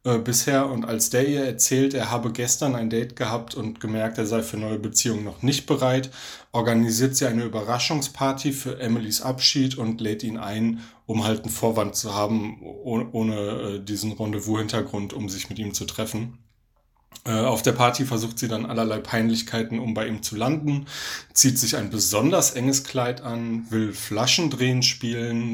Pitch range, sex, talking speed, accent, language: 110-130 Hz, male, 165 wpm, German, German